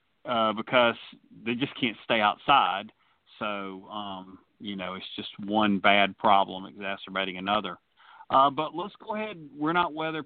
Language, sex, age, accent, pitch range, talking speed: English, male, 40-59, American, 115-155 Hz, 150 wpm